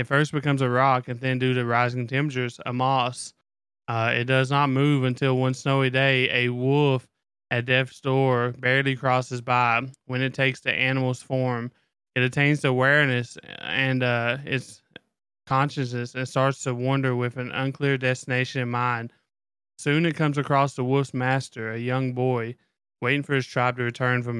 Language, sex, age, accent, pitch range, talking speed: English, male, 20-39, American, 120-130 Hz, 170 wpm